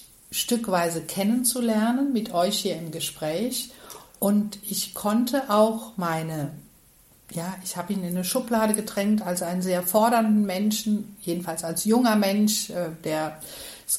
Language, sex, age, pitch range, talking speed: German, female, 60-79, 180-230 Hz, 135 wpm